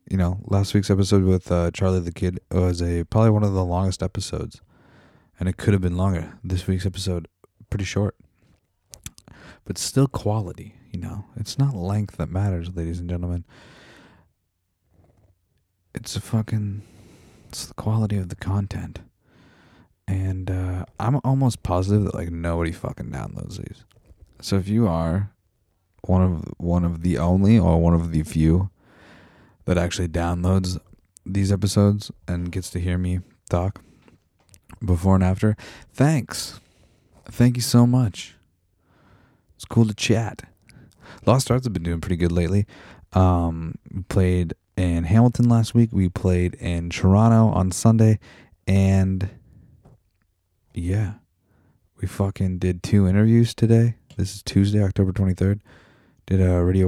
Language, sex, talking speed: English, male, 145 wpm